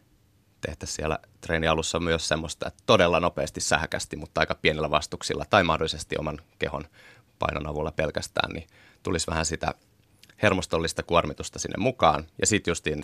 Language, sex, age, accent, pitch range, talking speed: Finnish, male, 30-49, native, 80-95 Hz, 145 wpm